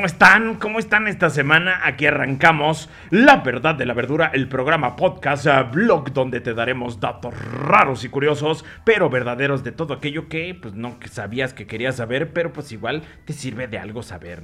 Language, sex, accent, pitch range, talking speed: Spanish, male, Mexican, 125-155 Hz, 185 wpm